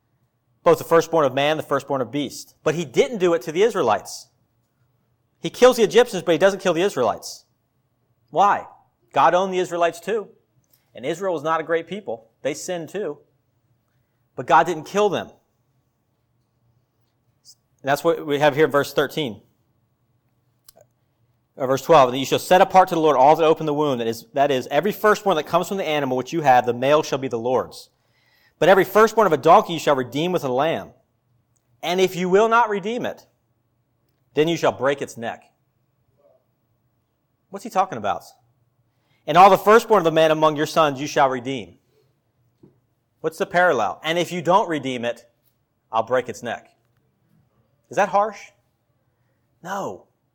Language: English